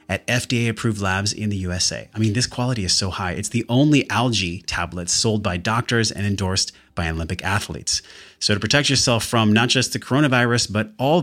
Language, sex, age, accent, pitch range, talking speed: English, male, 30-49, American, 95-130 Hz, 200 wpm